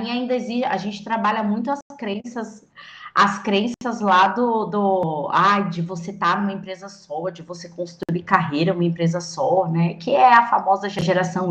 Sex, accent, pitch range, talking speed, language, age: female, Brazilian, 185-245 Hz, 180 wpm, Portuguese, 20-39